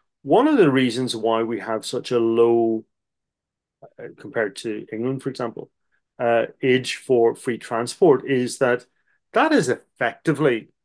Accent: British